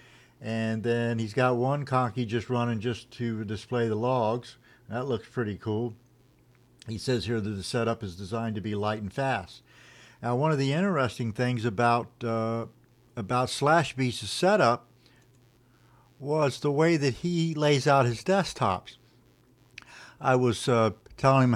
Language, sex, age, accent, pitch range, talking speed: English, male, 60-79, American, 115-130 Hz, 155 wpm